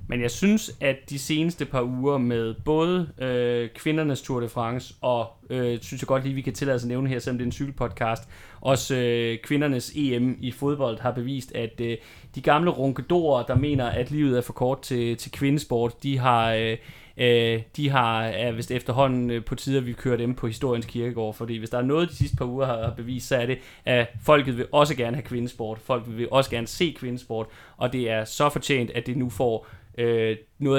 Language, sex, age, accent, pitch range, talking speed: Danish, male, 30-49, native, 115-135 Hz, 215 wpm